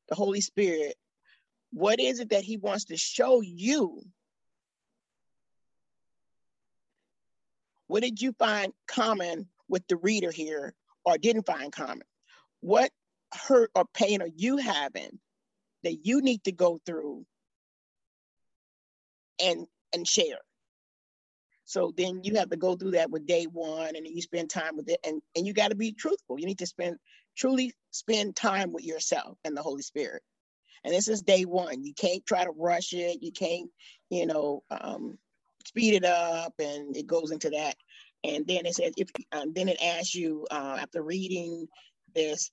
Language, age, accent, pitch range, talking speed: English, 40-59, American, 165-215 Hz, 165 wpm